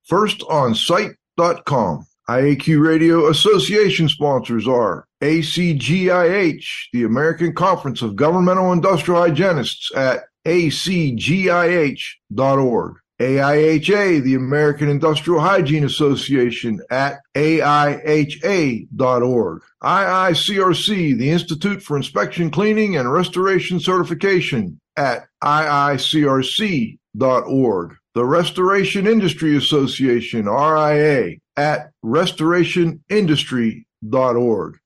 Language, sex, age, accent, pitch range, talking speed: English, male, 50-69, American, 135-175 Hz, 75 wpm